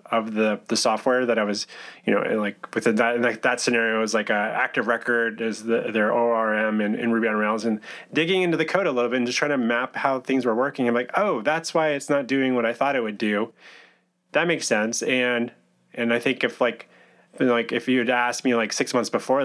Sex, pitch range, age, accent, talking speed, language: male, 110-130 Hz, 20-39, American, 250 wpm, English